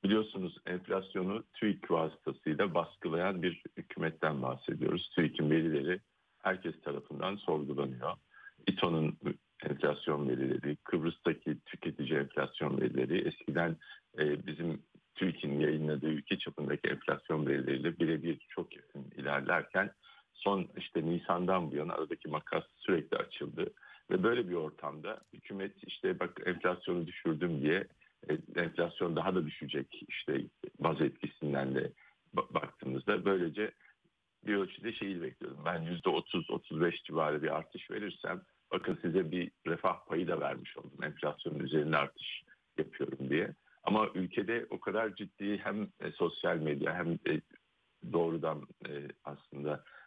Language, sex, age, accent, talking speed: Turkish, male, 60-79, native, 115 wpm